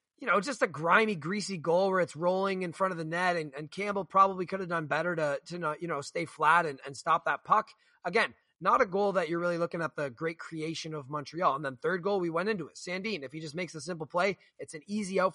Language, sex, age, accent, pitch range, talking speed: English, male, 20-39, American, 155-200 Hz, 270 wpm